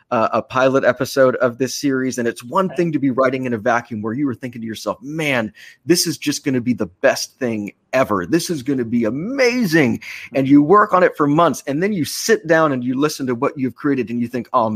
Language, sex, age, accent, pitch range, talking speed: English, male, 30-49, American, 115-155 Hz, 255 wpm